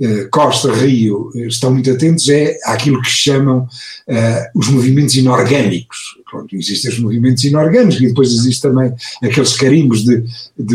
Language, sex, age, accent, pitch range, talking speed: Portuguese, male, 60-79, Portuguese, 125-190 Hz, 145 wpm